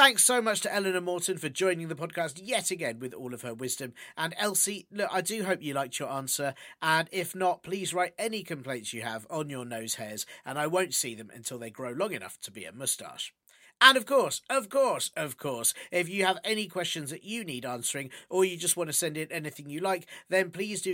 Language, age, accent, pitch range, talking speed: English, 40-59, British, 140-190 Hz, 240 wpm